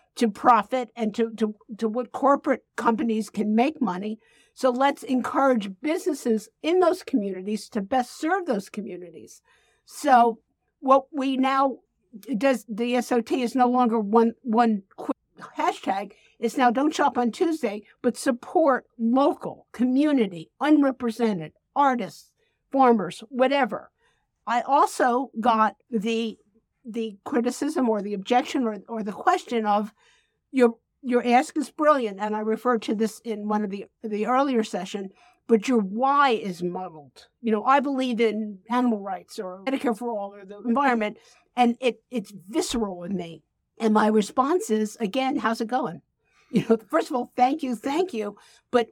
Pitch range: 215-265 Hz